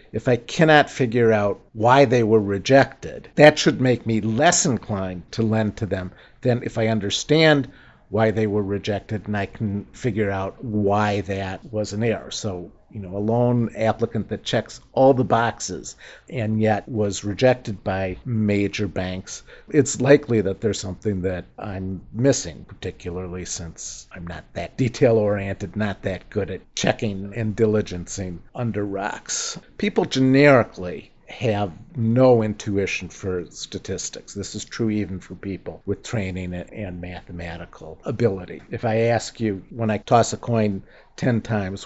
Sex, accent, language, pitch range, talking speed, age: male, American, English, 95-115 Hz, 155 wpm, 50-69